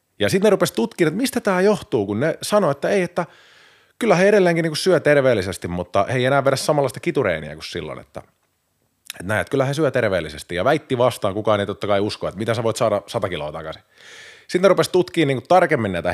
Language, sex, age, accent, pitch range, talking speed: Finnish, male, 30-49, native, 95-155 Hz, 225 wpm